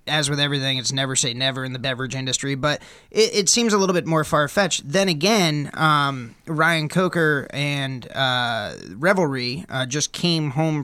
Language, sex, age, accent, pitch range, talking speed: English, male, 20-39, American, 125-150 Hz, 175 wpm